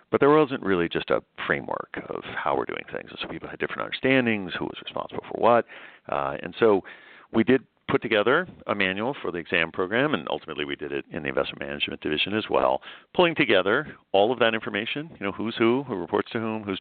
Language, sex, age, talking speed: English, male, 50-69, 220 wpm